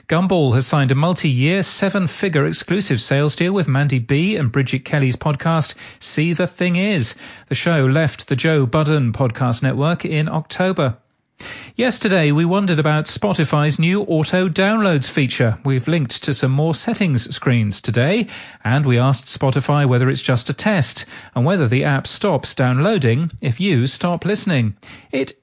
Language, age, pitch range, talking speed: English, 40-59, 130-175 Hz, 155 wpm